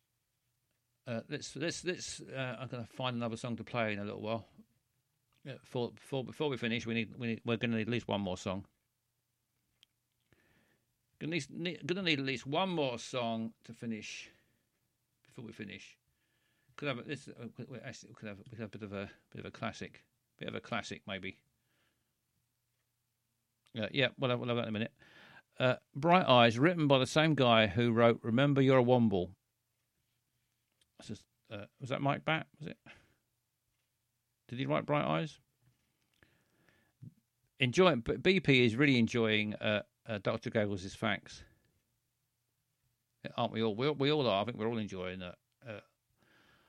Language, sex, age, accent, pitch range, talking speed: English, male, 50-69, British, 110-130 Hz, 175 wpm